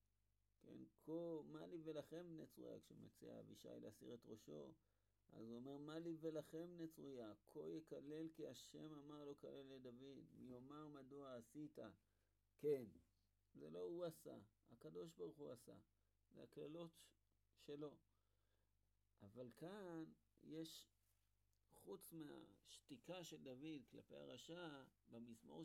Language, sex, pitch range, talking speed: Hebrew, male, 100-150 Hz, 120 wpm